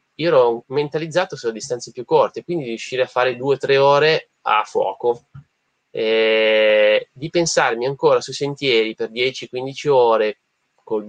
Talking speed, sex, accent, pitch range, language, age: 150 wpm, male, native, 110-175 Hz, Italian, 20-39